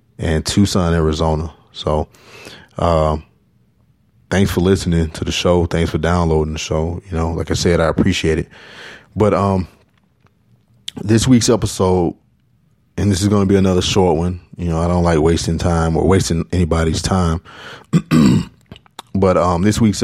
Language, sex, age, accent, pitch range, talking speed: English, male, 20-39, American, 80-95 Hz, 160 wpm